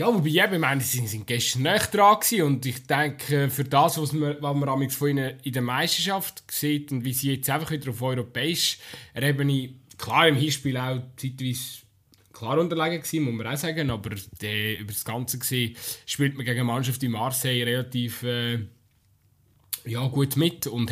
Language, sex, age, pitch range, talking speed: German, male, 20-39, 115-140 Hz, 180 wpm